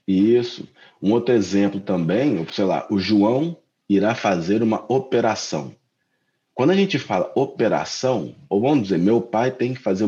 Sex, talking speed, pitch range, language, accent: male, 155 wpm, 95-125 Hz, English, Brazilian